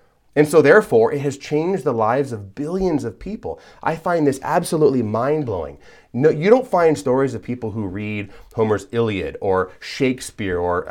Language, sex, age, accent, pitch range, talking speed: English, male, 30-49, American, 110-160 Hz, 170 wpm